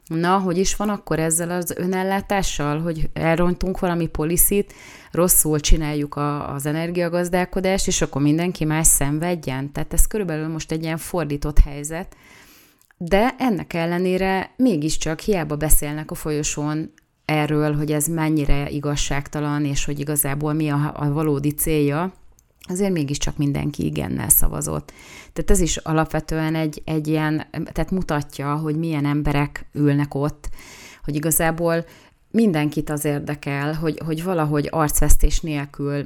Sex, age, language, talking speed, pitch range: female, 30-49, Hungarian, 130 wpm, 145-165 Hz